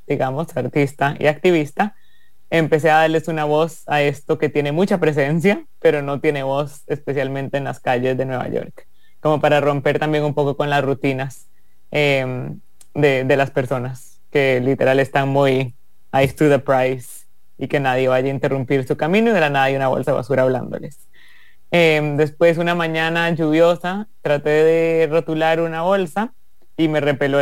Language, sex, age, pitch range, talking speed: English, male, 30-49, 140-160 Hz, 175 wpm